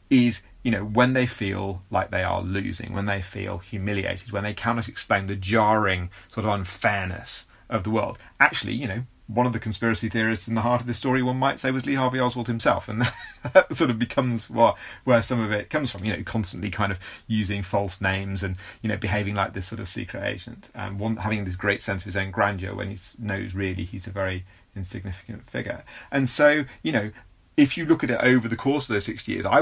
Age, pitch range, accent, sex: 30-49, 100-120 Hz, British, male